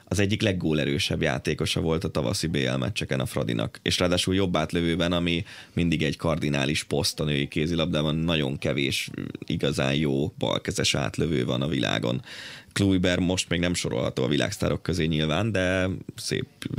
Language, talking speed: Hungarian, 155 wpm